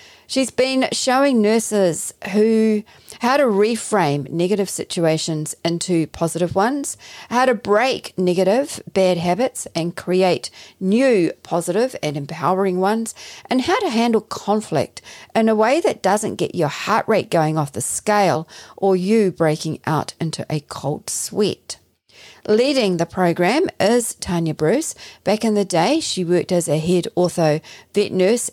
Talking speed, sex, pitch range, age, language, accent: 145 wpm, female, 165-210 Hz, 40-59, English, Australian